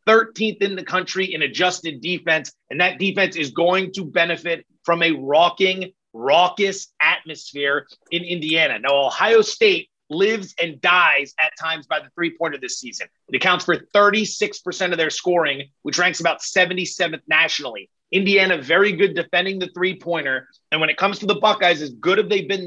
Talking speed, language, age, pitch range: 170 wpm, English, 30-49, 160-195 Hz